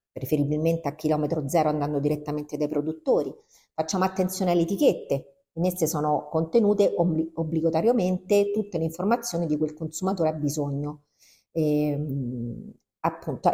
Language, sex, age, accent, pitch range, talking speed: Italian, female, 40-59, native, 140-180 Hz, 120 wpm